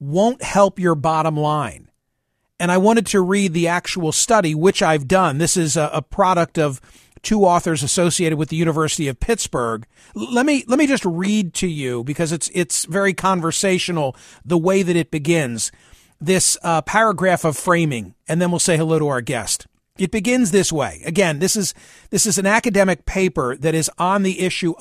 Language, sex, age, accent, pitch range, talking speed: English, male, 40-59, American, 160-200 Hz, 190 wpm